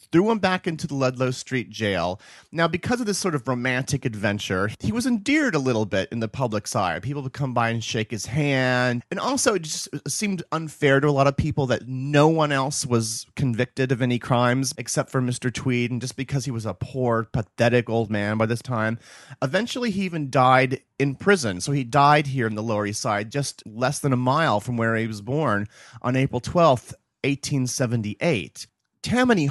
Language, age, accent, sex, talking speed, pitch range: English, 30-49, American, male, 205 wpm, 115-145 Hz